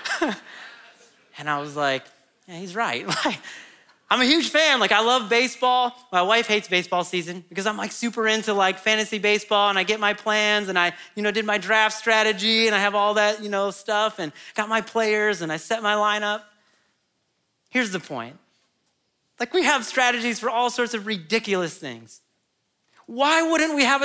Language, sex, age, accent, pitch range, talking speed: English, male, 30-49, American, 180-235 Hz, 185 wpm